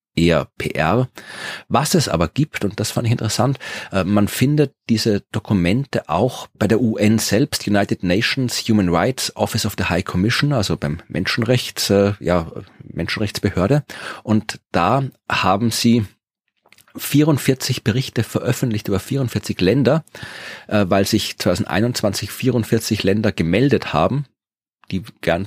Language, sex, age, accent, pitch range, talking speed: German, male, 30-49, German, 95-120 Hz, 125 wpm